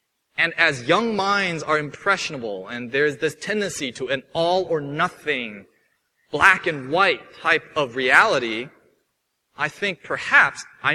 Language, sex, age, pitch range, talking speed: English, male, 30-49, 125-180 Hz, 135 wpm